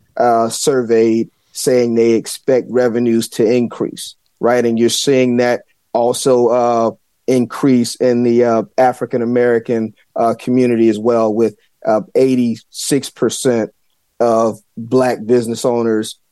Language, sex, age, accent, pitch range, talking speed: English, male, 30-49, American, 115-125 Hz, 110 wpm